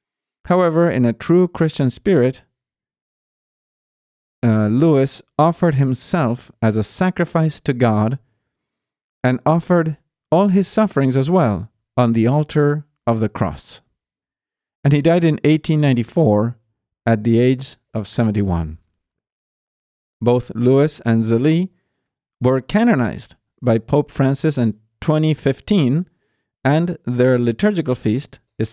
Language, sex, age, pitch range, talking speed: English, male, 50-69, 115-160 Hz, 115 wpm